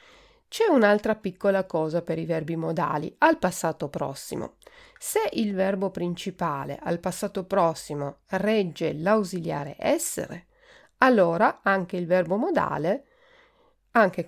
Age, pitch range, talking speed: 40-59, 175-270 Hz, 115 wpm